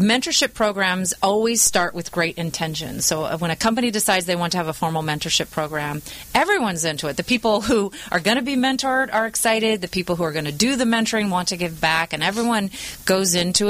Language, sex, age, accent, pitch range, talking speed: English, female, 30-49, American, 165-215 Hz, 220 wpm